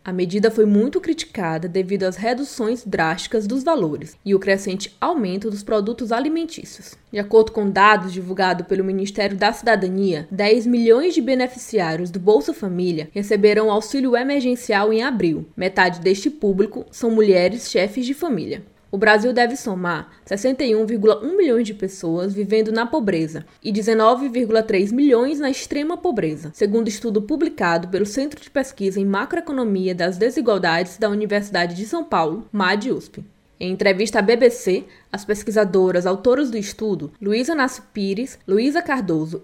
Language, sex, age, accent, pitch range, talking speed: Portuguese, female, 20-39, Brazilian, 190-245 Hz, 145 wpm